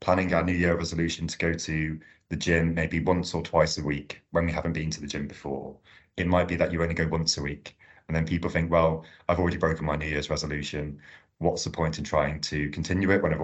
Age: 30-49